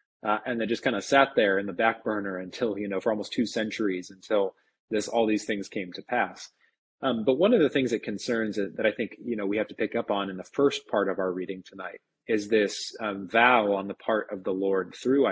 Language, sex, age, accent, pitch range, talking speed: English, male, 30-49, American, 95-110 Hz, 260 wpm